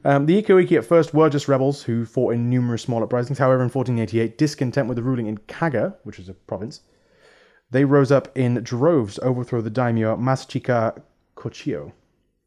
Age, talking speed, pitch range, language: 30-49, 185 wpm, 110-135 Hz, English